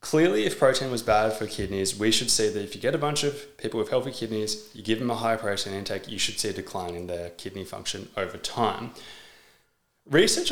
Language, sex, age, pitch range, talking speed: English, male, 20-39, 105-135 Hz, 230 wpm